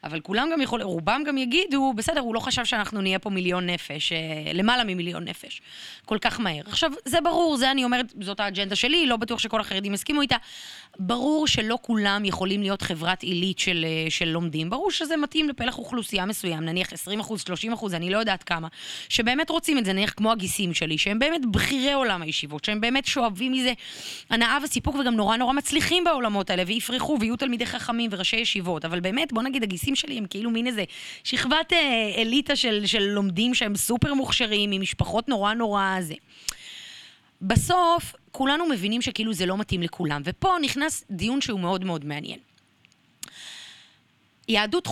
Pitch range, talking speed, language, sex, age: 185-250 Hz, 175 wpm, Hebrew, female, 20-39